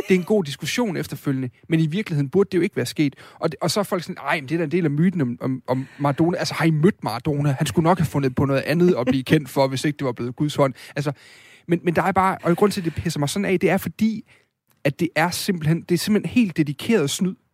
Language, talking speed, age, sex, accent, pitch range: Danish, 300 wpm, 30-49, male, native, 135-175 Hz